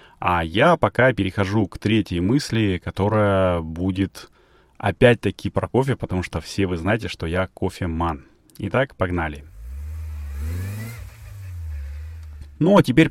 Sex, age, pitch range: male, 30-49, 90-115 Hz